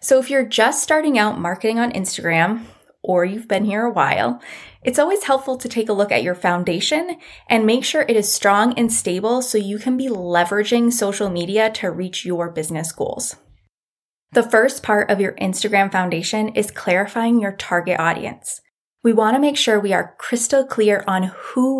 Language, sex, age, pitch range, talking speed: English, female, 20-39, 180-250 Hz, 185 wpm